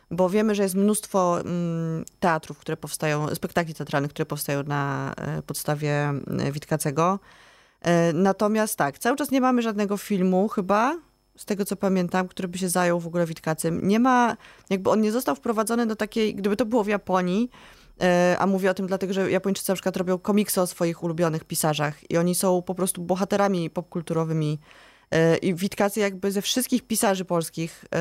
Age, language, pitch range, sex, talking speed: 20-39, Polish, 160-205 Hz, female, 165 wpm